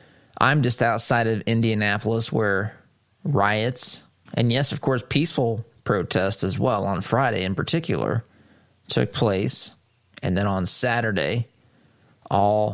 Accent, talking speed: American, 120 wpm